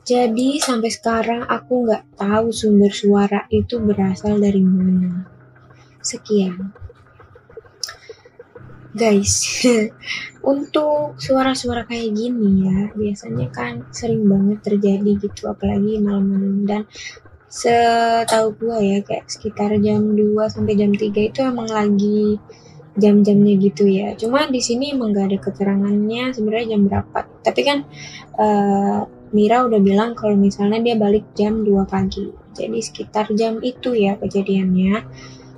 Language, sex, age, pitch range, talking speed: Indonesian, female, 10-29, 200-230 Hz, 125 wpm